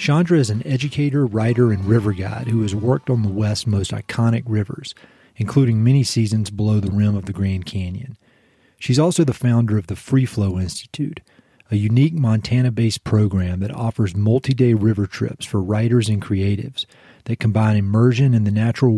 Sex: male